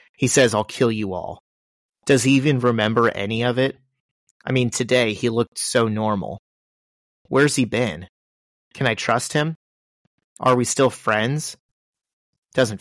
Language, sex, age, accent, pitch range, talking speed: English, male, 30-49, American, 105-130 Hz, 150 wpm